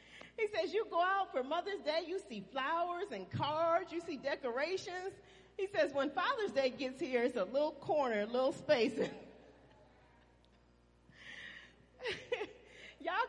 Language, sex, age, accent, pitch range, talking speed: English, female, 40-59, American, 245-375 Hz, 140 wpm